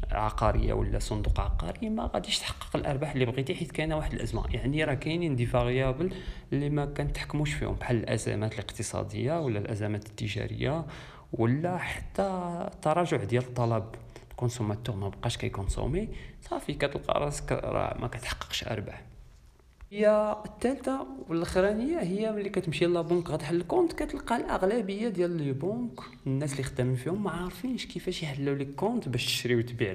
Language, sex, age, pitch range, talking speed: Arabic, male, 40-59, 115-155 Hz, 150 wpm